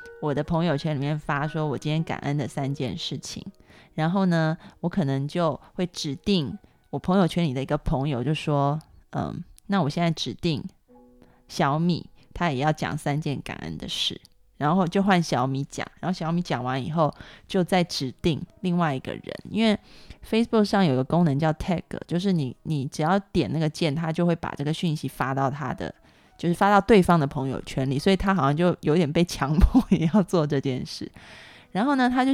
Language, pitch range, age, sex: Chinese, 145-190 Hz, 20-39, female